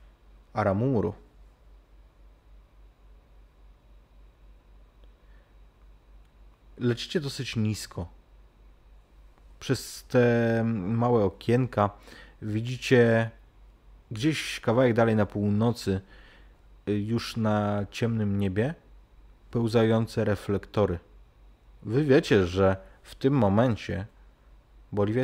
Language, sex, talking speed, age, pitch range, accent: Polish, male, 65 wpm, 30-49, 95-120 Hz, native